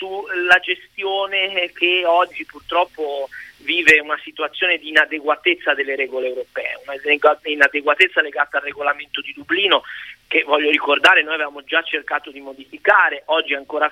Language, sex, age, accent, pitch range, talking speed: Italian, male, 30-49, native, 150-200 Hz, 140 wpm